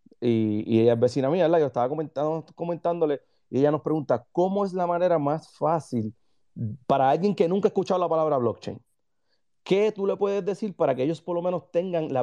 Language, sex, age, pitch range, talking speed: Spanish, male, 30-49, 130-185 Hz, 205 wpm